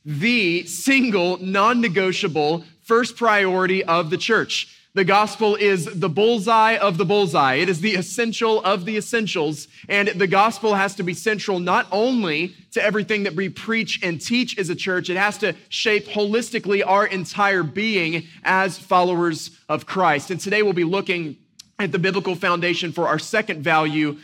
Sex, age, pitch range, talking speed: male, 20-39, 175-215 Hz, 165 wpm